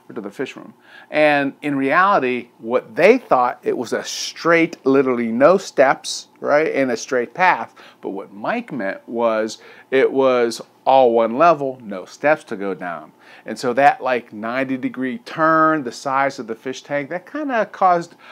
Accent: American